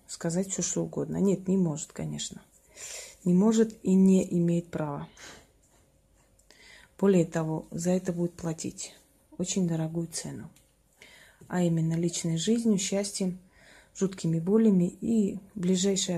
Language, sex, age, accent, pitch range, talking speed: Russian, female, 30-49, native, 165-195 Hz, 120 wpm